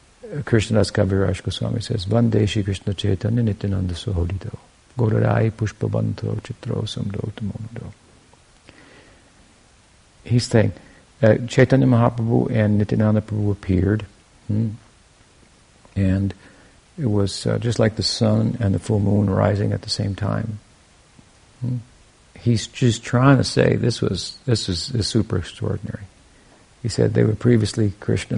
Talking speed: 115 wpm